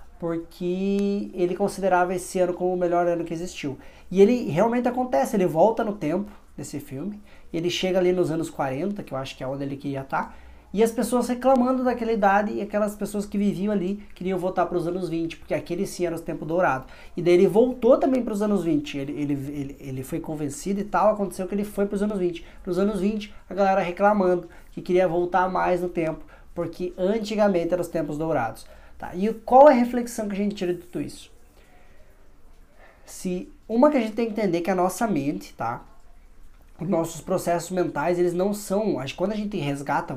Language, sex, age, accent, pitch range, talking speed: Portuguese, male, 20-39, Brazilian, 160-205 Hz, 210 wpm